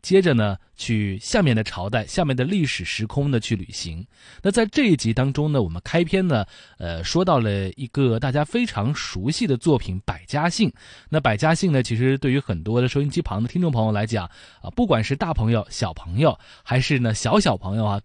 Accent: native